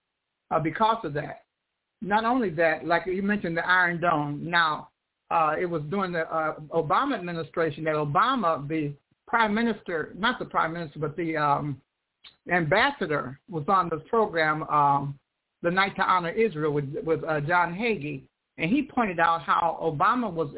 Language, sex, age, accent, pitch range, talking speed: English, male, 60-79, American, 160-205 Hz, 165 wpm